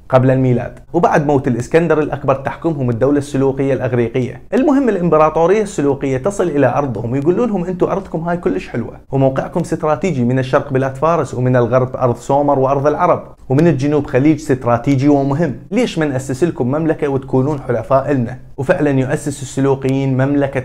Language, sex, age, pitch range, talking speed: Arabic, male, 20-39, 125-160 Hz, 150 wpm